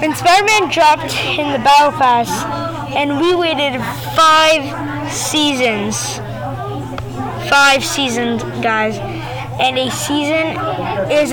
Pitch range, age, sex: 250-315 Hz, 20-39, female